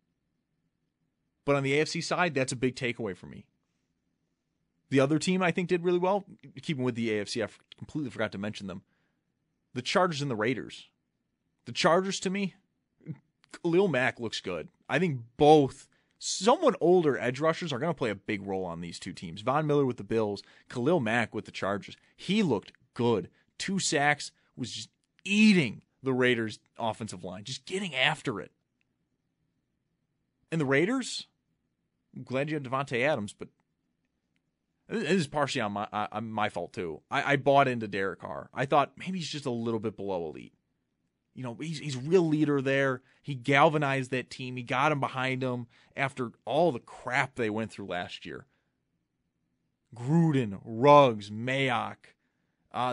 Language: English